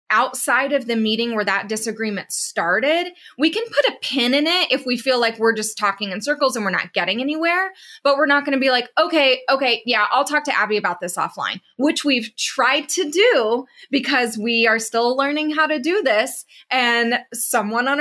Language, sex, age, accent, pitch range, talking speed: English, female, 20-39, American, 215-285 Hz, 210 wpm